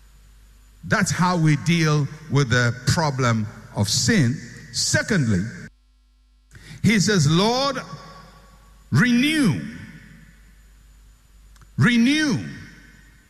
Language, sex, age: English, male, 60-79